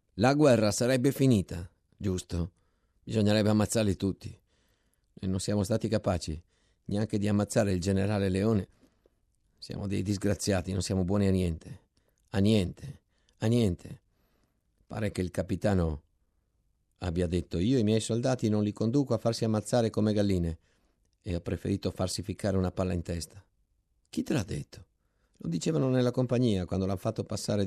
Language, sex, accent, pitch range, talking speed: Italian, male, native, 95-125 Hz, 150 wpm